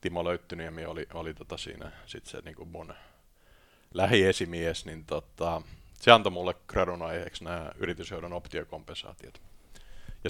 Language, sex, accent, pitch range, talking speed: Finnish, male, native, 85-95 Hz, 130 wpm